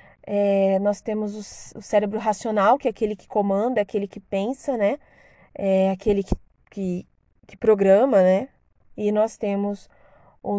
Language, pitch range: Portuguese, 210-275 Hz